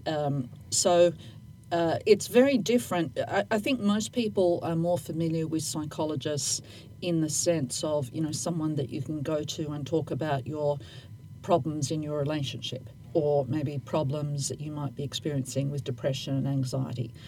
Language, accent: English, Australian